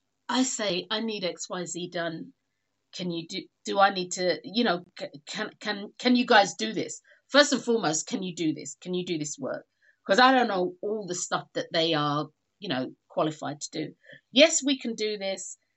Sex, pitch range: female, 180-255 Hz